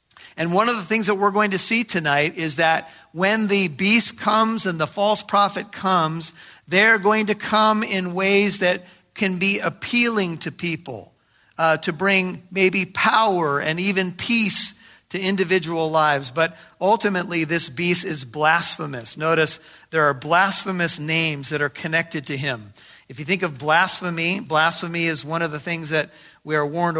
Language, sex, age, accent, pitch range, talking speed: English, male, 50-69, American, 155-195 Hz, 170 wpm